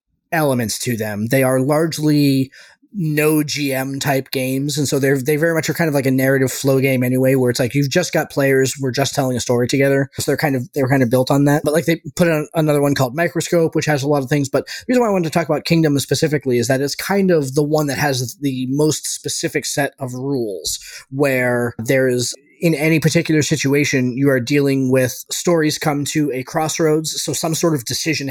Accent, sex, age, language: American, male, 20-39, English